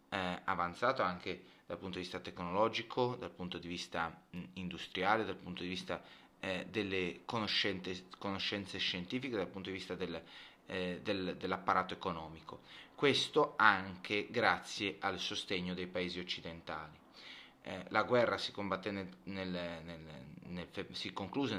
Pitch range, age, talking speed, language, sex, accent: 90-120 Hz, 30-49, 135 wpm, Italian, male, native